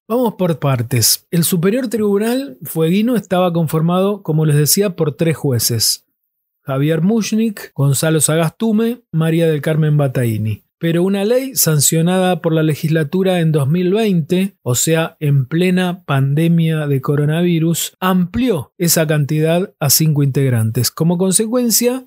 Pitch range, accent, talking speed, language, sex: 150-185 Hz, Argentinian, 130 wpm, Spanish, male